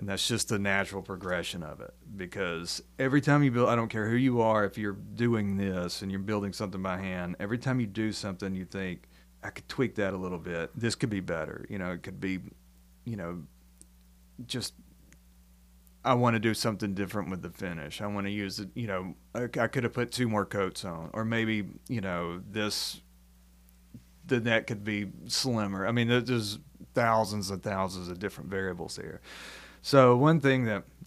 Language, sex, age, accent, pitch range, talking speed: English, male, 30-49, American, 90-120 Hz, 195 wpm